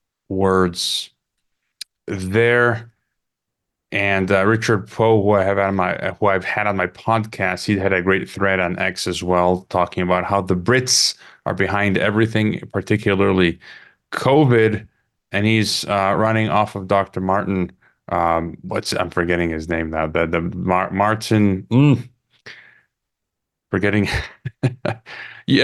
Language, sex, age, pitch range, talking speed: English, male, 30-49, 95-115 Hz, 140 wpm